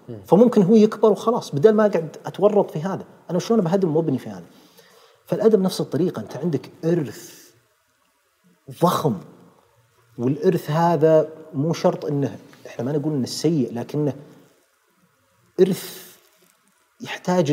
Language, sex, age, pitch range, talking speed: Arabic, male, 40-59, 135-190 Hz, 125 wpm